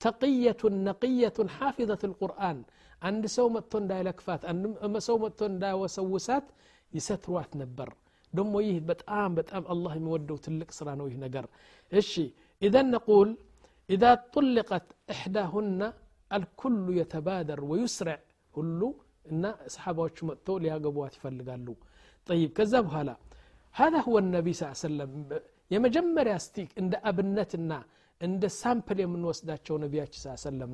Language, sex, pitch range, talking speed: Amharic, male, 155-210 Hz, 120 wpm